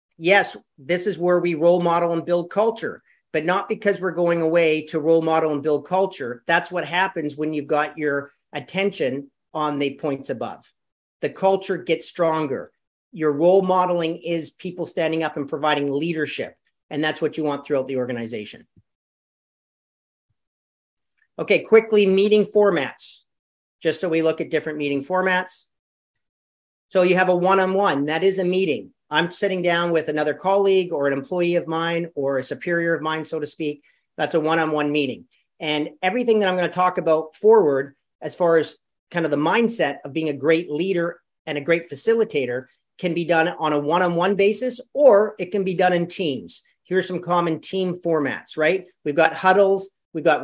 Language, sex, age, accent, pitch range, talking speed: English, male, 40-59, American, 150-185 Hz, 180 wpm